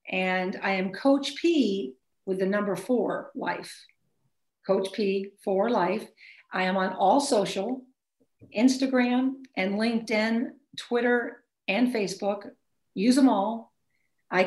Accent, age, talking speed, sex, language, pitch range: American, 50-69, 120 wpm, female, English, 195-255 Hz